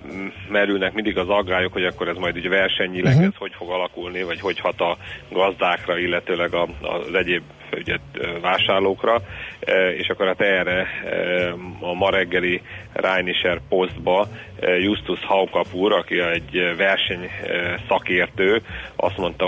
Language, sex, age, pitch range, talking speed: Hungarian, male, 30-49, 90-95 Hz, 125 wpm